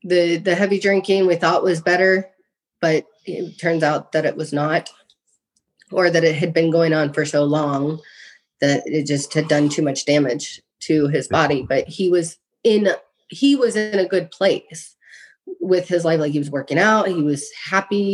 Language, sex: English, female